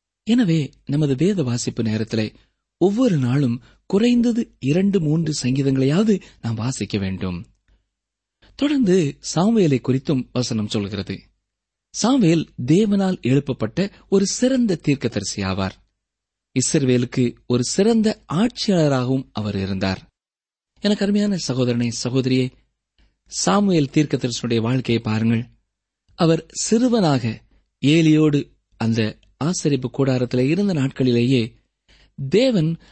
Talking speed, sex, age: 90 wpm, male, 30-49